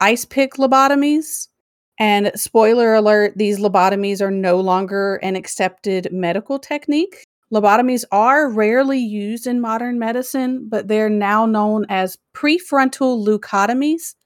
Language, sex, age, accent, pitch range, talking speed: English, female, 40-59, American, 195-235 Hz, 120 wpm